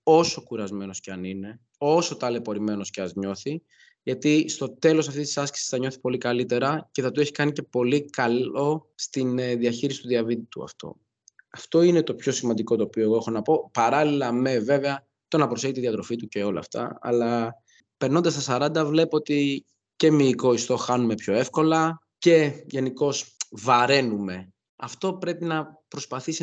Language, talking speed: Greek, 175 wpm